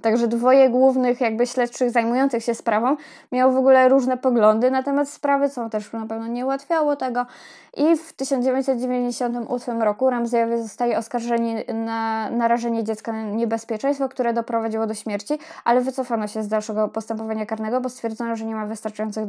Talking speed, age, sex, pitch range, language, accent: 160 wpm, 10-29, female, 215-250 Hz, Polish, native